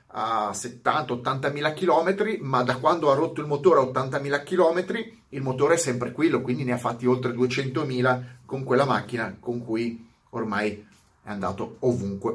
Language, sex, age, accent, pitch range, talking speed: Italian, male, 30-49, native, 120-155 Hz, 160 wpm